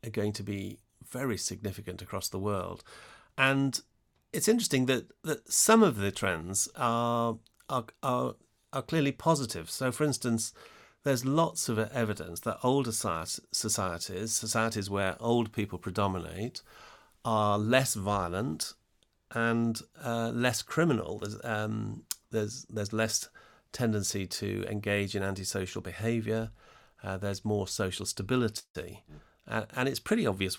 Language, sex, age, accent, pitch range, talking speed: English, male, 40-59, British, 95-115 Hz, 130 wpm